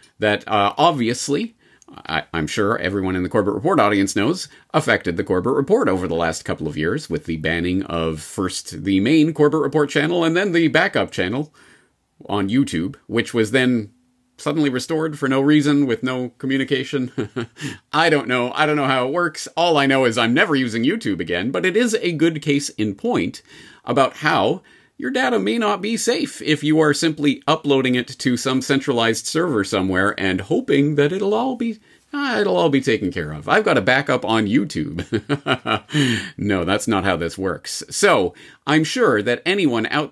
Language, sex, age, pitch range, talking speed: English, male, 40-59, 105-155 Hz, 190 wpm